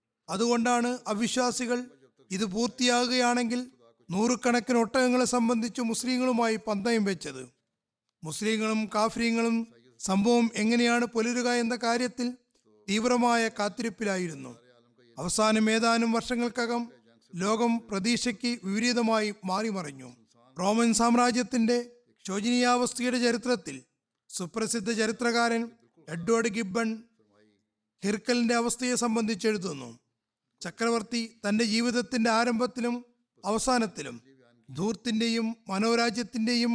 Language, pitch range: Malayalam, 195-240 Hz